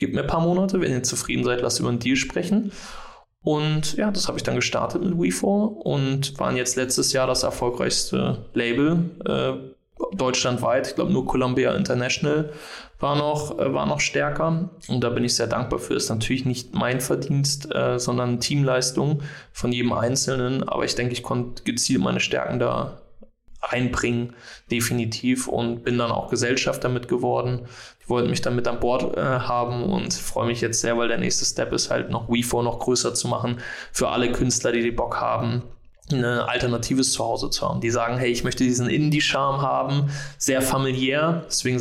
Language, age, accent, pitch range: German, 20-39, German, 120-145 Hz